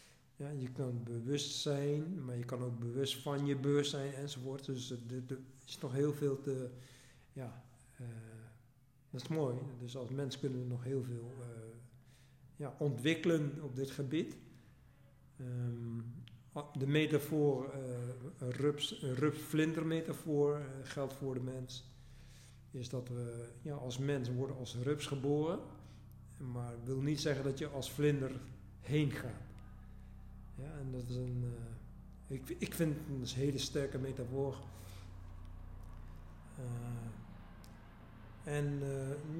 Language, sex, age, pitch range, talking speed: Dutch, male, 50-69, 120-145 Hz, 135 wpm